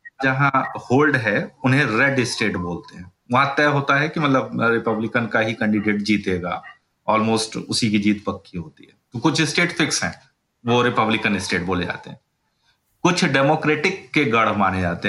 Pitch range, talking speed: 110-140 Hz, 170 wpm